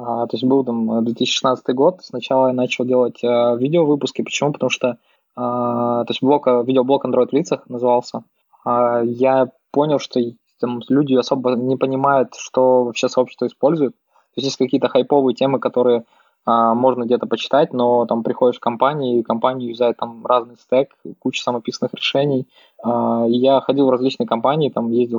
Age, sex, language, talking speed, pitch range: 20-39, male, Russian, 160 wpm, 120-135 Hz